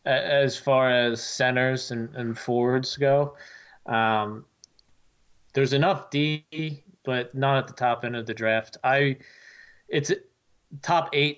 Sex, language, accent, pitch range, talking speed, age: male, English, American, 110-130 Hz, 130 wpm, 20-39